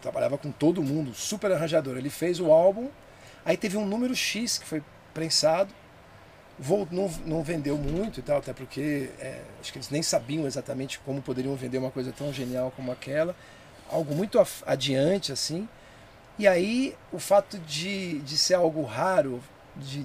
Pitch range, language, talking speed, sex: 135-175 Hz, Portuguese, 175 wpm, male